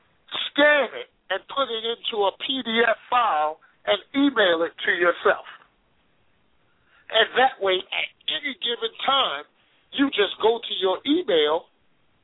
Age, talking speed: 50-69, 130 wpm